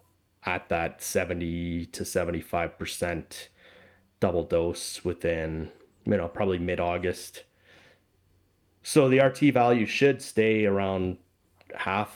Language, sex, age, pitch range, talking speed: English, male, 20-39, 85-100 Hz, 110 wpm